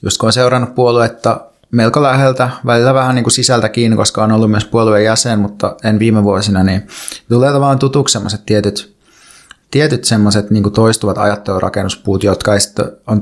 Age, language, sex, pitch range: 30-49, Finnish, male, 100-115 Hz